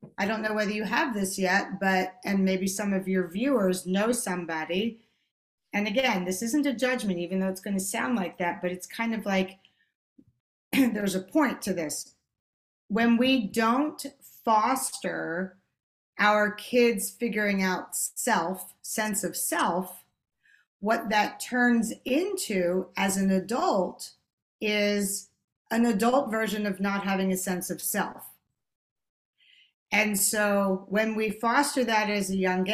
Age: 40-59